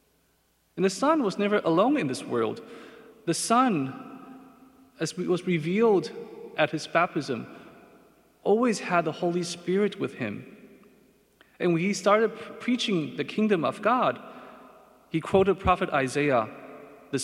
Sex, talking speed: male, 135 wpm